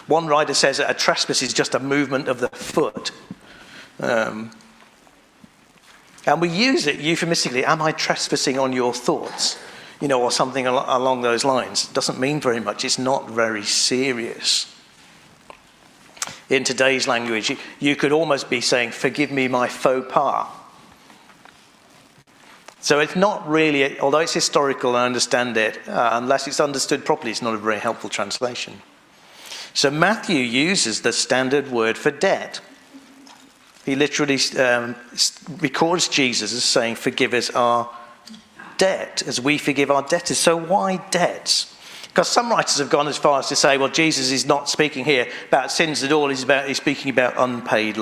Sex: male